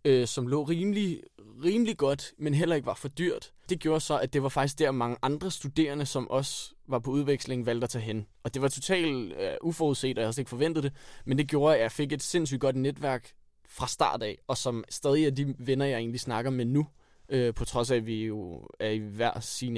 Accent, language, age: native, Danish, 20-39